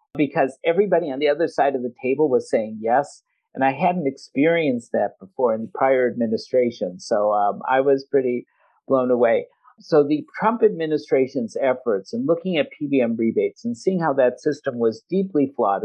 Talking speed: 180 wpm